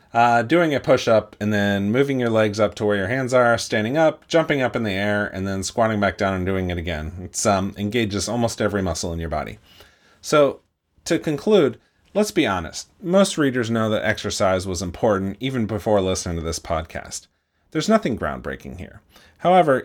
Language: English